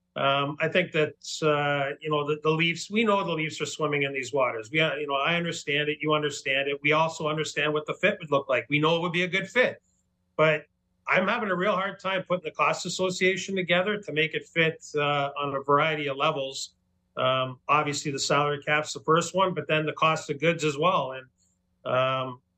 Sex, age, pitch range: male, 40-59, 145-180 Hz